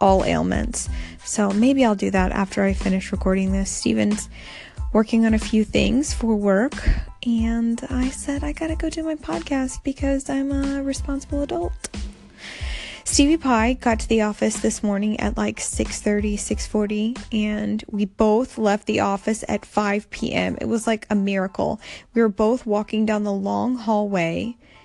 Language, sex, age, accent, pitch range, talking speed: English, female, 20-39, American, 200-240 Hz, 165 wpm